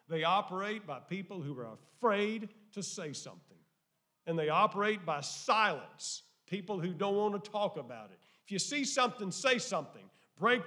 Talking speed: 170 wpm